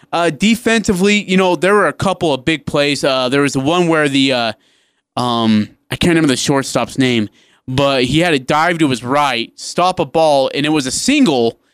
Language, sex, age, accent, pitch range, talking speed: English, male, 20-39, American, 135-185 Hz, 210 wpm